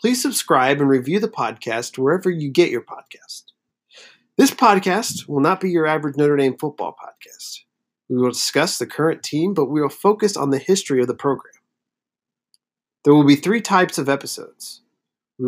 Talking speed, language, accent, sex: 180 wpm, English, American, male